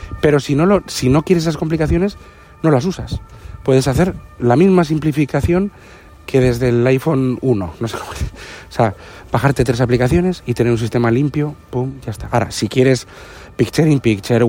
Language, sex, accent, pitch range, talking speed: Spanish, male, Spanish, 115-145 Hz, 170 wpm